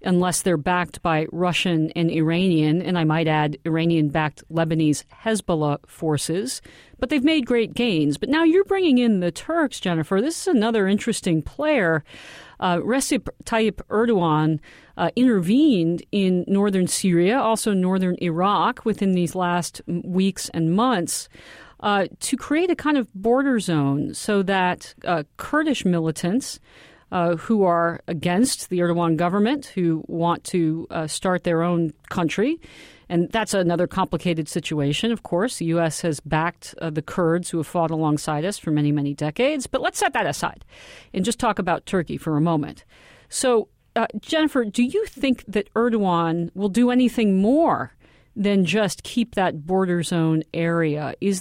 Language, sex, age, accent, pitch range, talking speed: English, female, 40-59, American, 165-230 Hz, 160 wpm